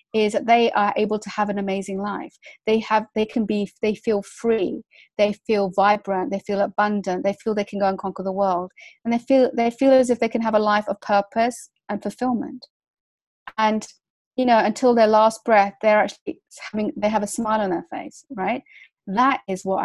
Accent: British